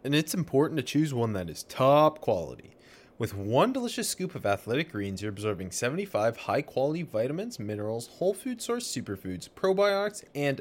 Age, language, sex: 20-39, English, male